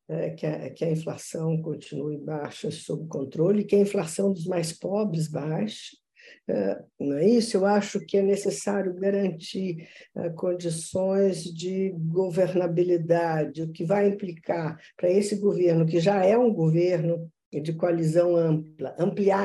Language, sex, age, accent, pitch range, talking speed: Portuguese, female, 50-69, Brazilian, 160-200 Hz, 125 wpm